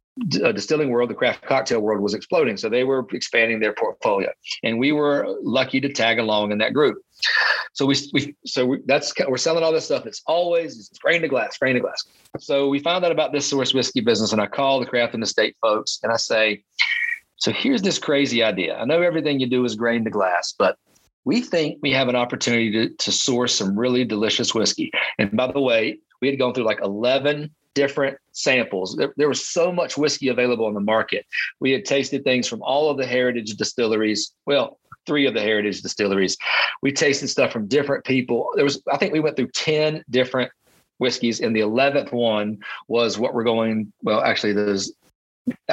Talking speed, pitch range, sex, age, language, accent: 210 wpm, 115-145 Hz, male, 40-59, English, American